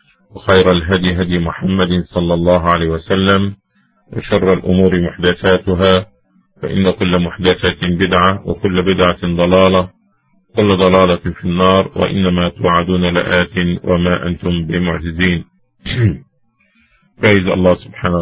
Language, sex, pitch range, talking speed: English, male, 90-100 Hz, 100 wpm